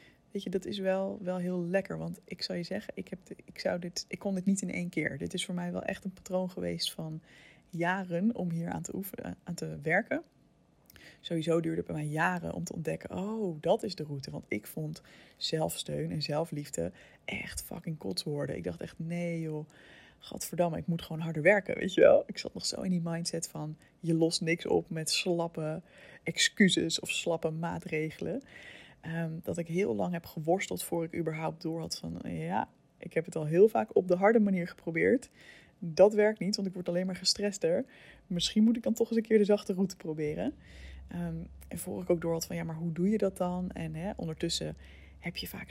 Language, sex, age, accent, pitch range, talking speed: Dutch, female, 20-39, Dutch, 160-190 Hz, 215 wpm